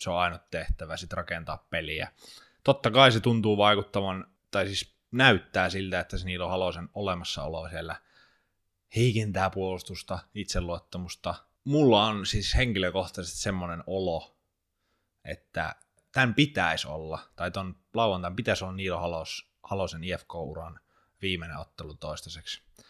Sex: male